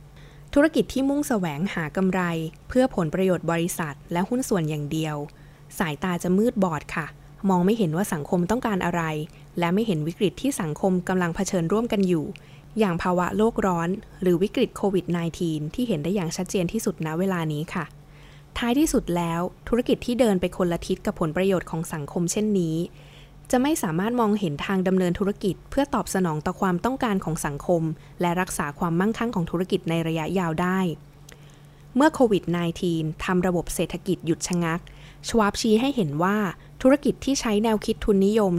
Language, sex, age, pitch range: Thai, female, 20-39, 165-210 Hz